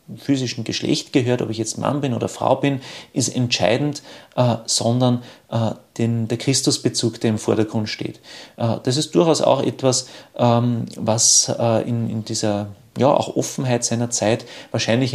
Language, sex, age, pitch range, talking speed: German, male, 30-49, 110-125 Hz, 160 wpm